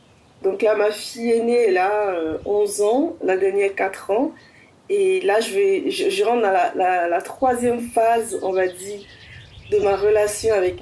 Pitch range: 205-290 Hz